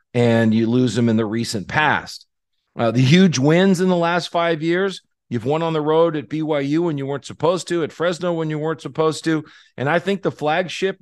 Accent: American